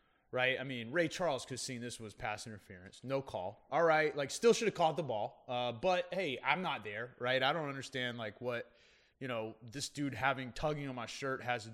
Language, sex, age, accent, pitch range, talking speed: English, male, 20-39, American, 115-150 Hz, 235 wpm